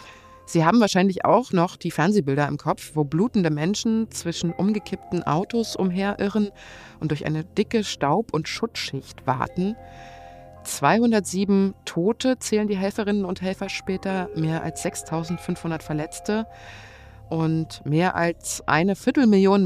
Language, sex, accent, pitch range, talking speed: German, female, German, 155-200 Hz, 125 wpm